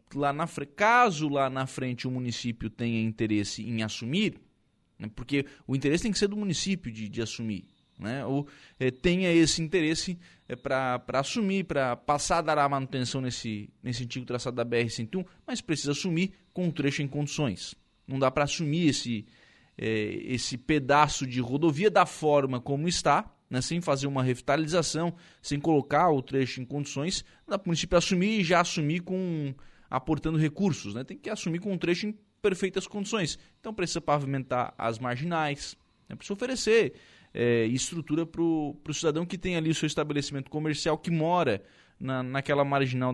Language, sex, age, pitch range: Portuguese, male, 20-39, 125-170 Hz